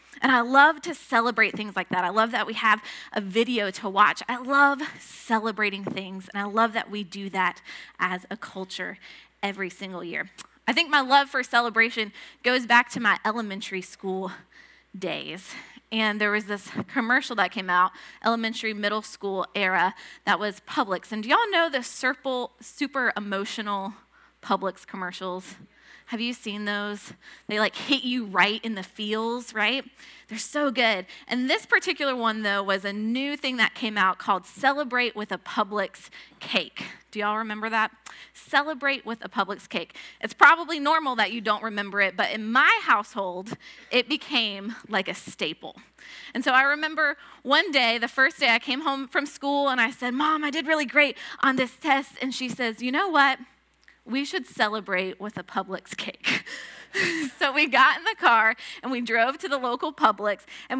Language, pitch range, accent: English, 205-270 Hz, American